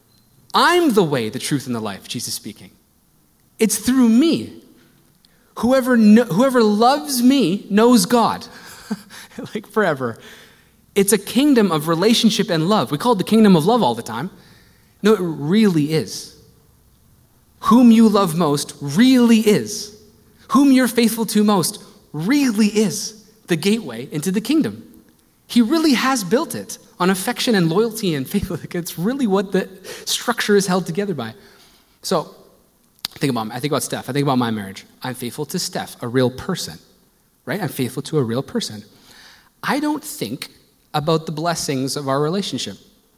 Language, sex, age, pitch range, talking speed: English, male, 30-49, 145-230 Hz, 160 wpm